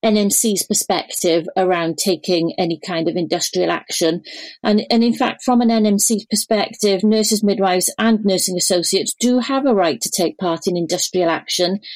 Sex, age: female, 40-59